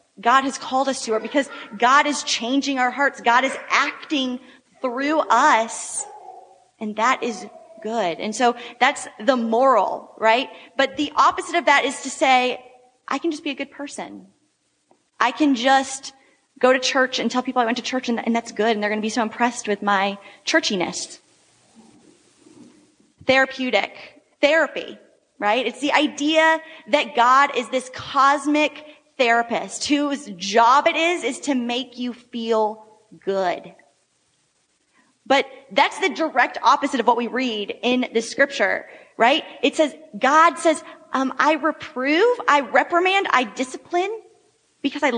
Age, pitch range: 20-39, 235-295 Hz